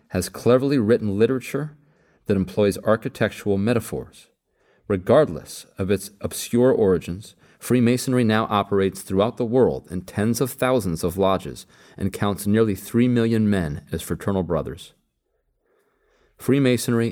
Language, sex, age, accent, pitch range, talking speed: English, male, 40-59, American, 90-115 Hz, 125 wpm